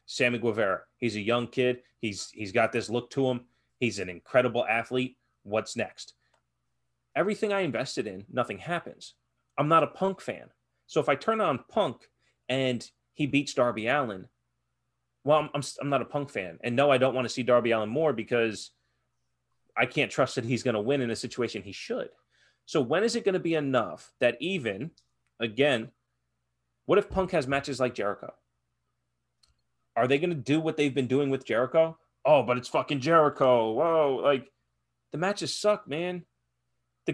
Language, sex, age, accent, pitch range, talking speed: English, male, 30-49, American, 110-165 Hz, 185 wpm